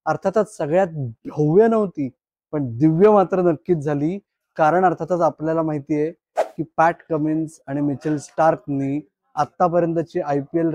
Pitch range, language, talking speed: 155-190 Hz, Marathi, 85 wpm